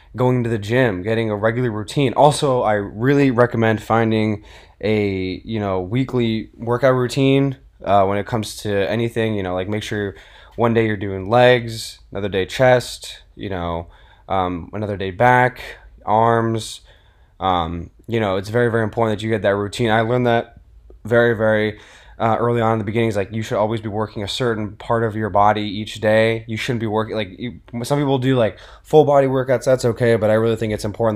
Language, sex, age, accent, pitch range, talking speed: English, male, 20-39, American, 100-120 Hz, 200 wpm